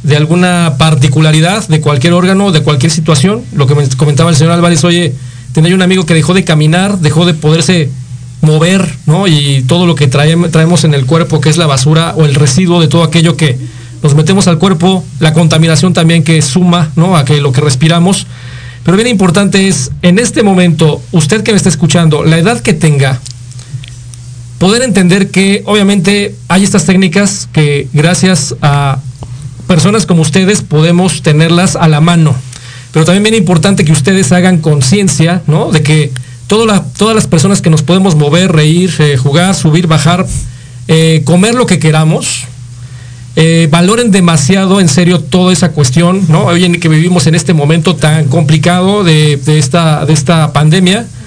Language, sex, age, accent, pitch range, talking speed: Spanish, male, 40-59, Mexican, 150-180 Hz, 180 wpm